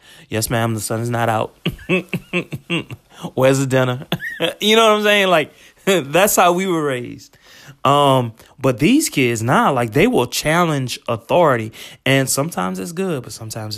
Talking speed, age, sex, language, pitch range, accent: 165 wpm, 20-39, male, English, 105-130 Hz, American